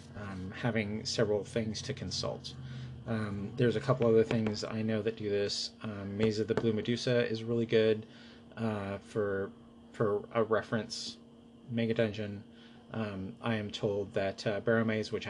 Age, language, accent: 30-49, English, American